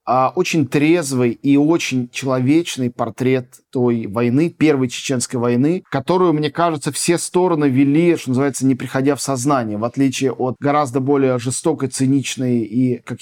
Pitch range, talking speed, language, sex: 120-150 Hz, 145 wpm, Russian, male